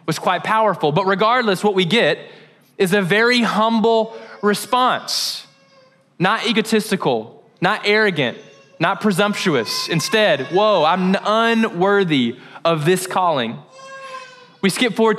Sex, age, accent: male, 20-39, American